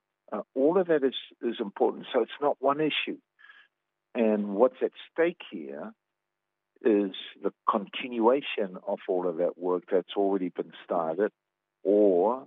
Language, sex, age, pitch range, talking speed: English, male, 50-69, 95-115 Hz, 145 wpm